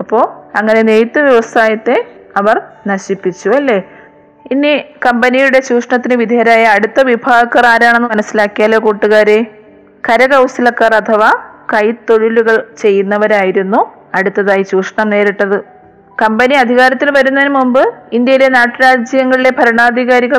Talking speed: 90 wpm